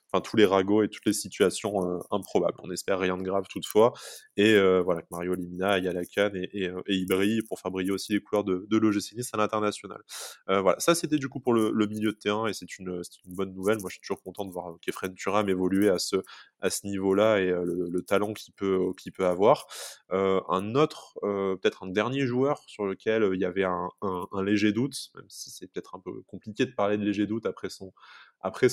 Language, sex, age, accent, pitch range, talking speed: French, male, 20-39, French, 95-110 Hz, 235 wpm